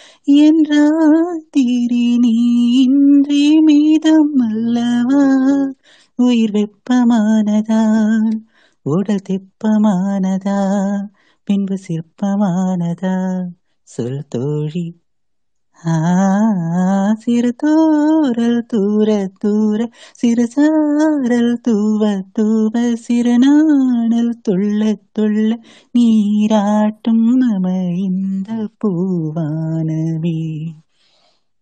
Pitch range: 195-265 Hz